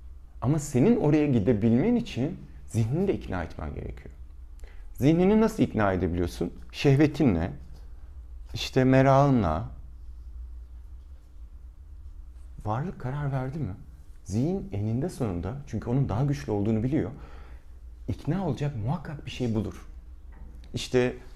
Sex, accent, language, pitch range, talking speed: male, native, Turkish, 70-120 Hz, 105 wpm